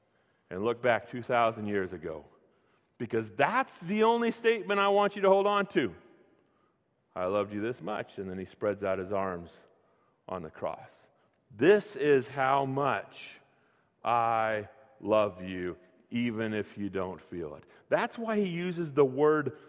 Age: 40-59